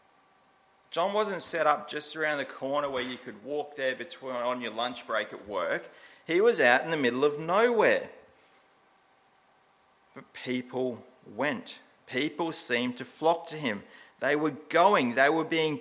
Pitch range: 125-190 Hz